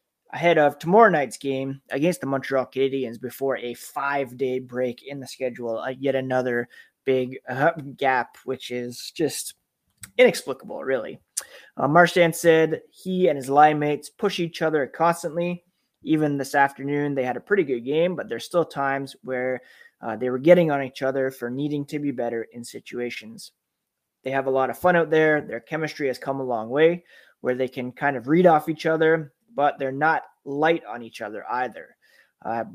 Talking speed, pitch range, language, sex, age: 180 wpm, 130-160 Hz, English, male, 20-39